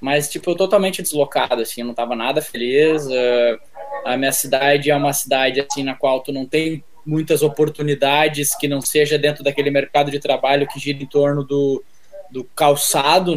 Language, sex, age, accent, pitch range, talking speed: Portuguese, male, 10-29, Brazilian, 140-185 Hz, 180 wpm